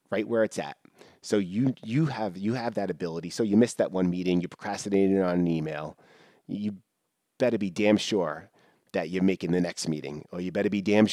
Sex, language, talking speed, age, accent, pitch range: male, English, 210 wpm, 30-49, American, 85-100 Hz